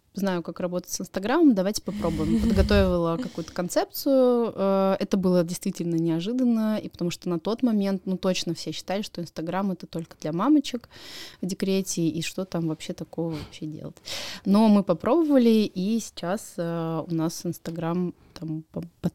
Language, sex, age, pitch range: Russian, female, 20-39, 170-205 Hz